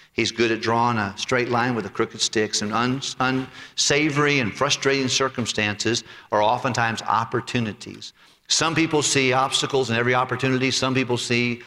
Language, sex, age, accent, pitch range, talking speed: English, male, 50-69, American, 105-130 Hz, 150 wpm